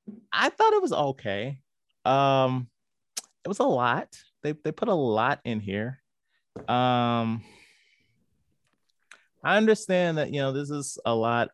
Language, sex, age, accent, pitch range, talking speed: English, male, 30-49, American, 100-140 Hz, 140 wpm